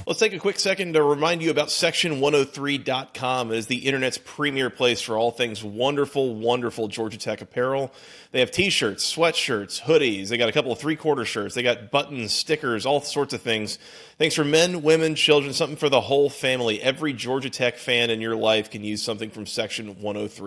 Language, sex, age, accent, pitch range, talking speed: English, male, 30-49, American, 115-150 Hz, 195 wpm